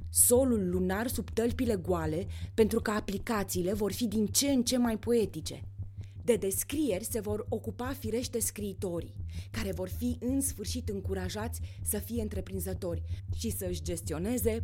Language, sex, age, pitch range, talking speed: Romanian, female, 20-39, 85-105 Hz, 145 wpm